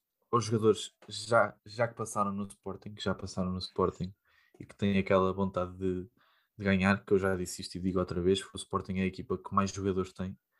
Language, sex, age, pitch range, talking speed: Portuguese, male, 20-39, 95-105 Hz, 225 wpm